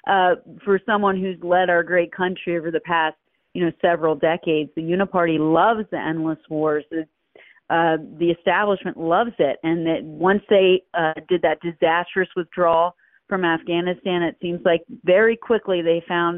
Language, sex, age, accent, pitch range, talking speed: English, female, 40-59, American, 165-190 Hz, 165 wpm